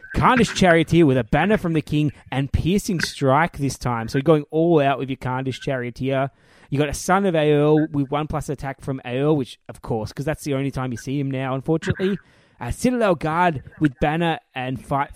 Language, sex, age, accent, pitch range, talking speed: English, male, 20-39, Australian, 130-165 Hz, 215 wpm